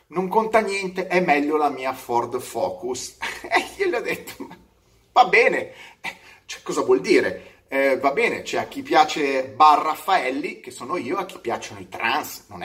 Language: Italian